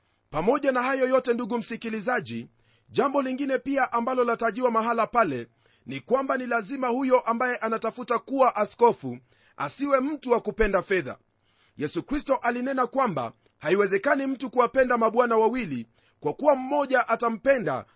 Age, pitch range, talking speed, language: 40-59, 195-265 Hz, 135 wpm, Swahili